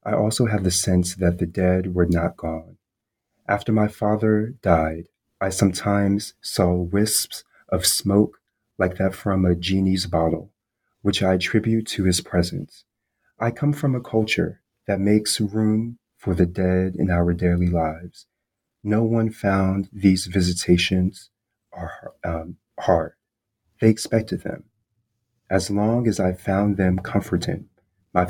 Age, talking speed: 30-49, 140 wpm